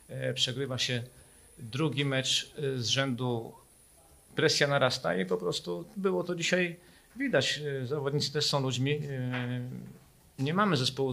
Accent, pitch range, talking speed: native, 130-155 Hz, 120 wpm